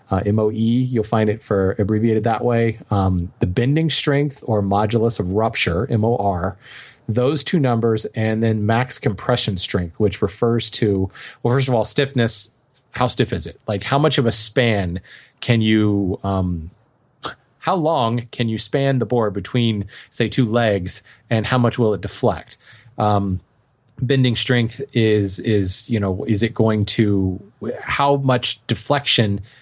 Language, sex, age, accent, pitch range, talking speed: English, male, 20-39, American, 105-125 Hz, 160 wpm